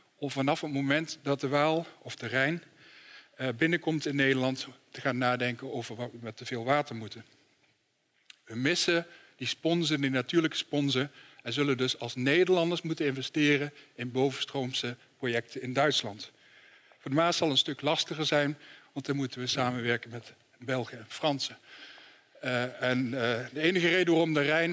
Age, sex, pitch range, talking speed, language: 60-79, male, 125-160 Hz, 170 wpm, Dutch